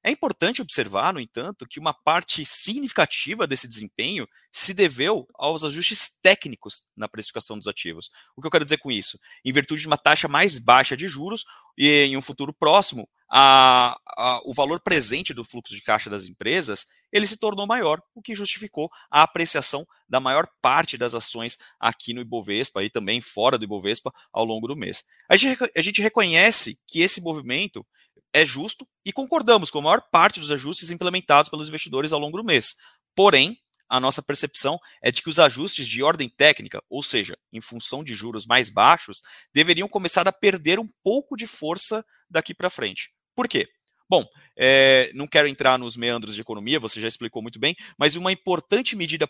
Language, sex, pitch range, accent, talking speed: Portuguese, male, 125-190 Hz, Brazilian, 180 wpm